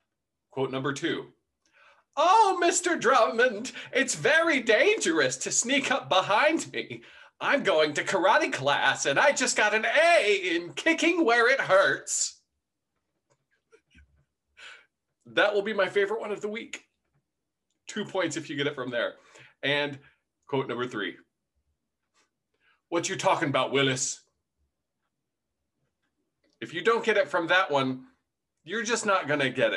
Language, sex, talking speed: English, male, 140 wpm